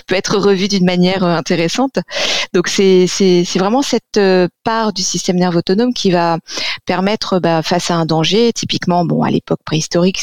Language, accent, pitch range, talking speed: French, French, 160-195 Hz, 190 wpm